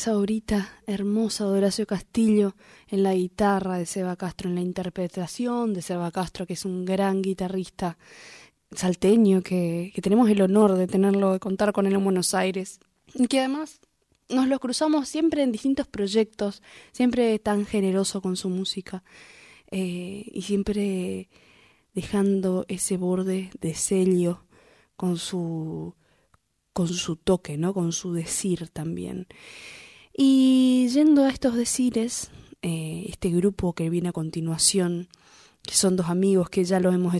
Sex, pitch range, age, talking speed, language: female, 175-200 Hz, 20-39, 145 wpm, Spanish